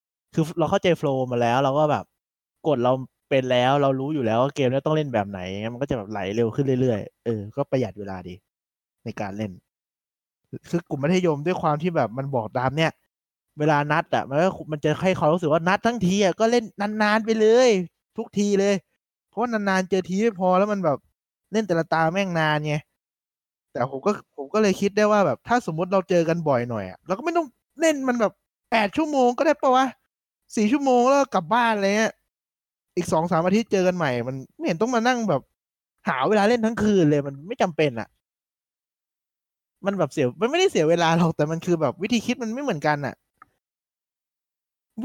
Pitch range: 130-205 Hz